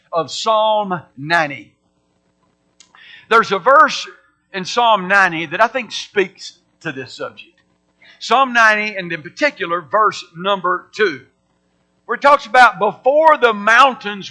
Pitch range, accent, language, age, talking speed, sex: 185-230 Hz, American, English, 60-79, 130 wpm, male